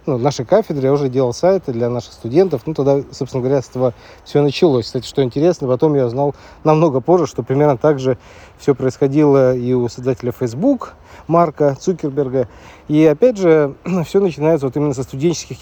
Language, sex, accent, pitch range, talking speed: Russian, male, native, 125-150 Hz, 180 wpm